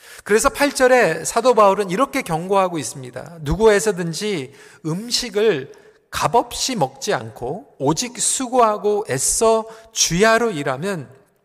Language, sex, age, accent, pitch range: Korean, male, 40-59, native, 155-240 Hz